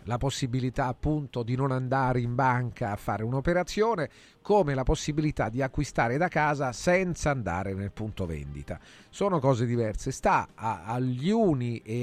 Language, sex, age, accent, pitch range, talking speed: Italian, male, 40-59, native, 120-160 Hz, 150 wpm